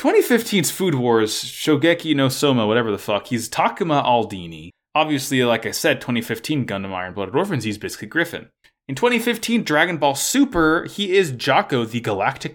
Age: 20-39